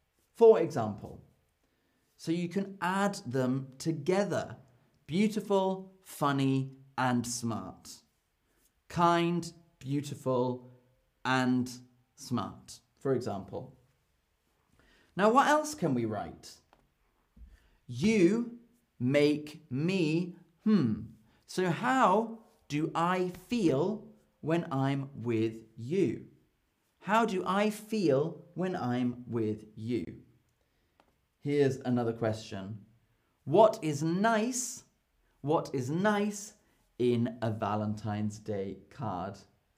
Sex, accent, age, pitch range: male, British, 30-49, 115-180 Hz